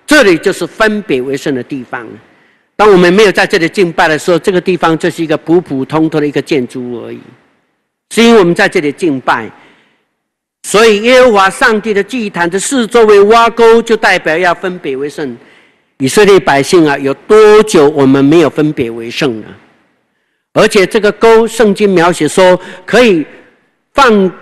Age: 50-69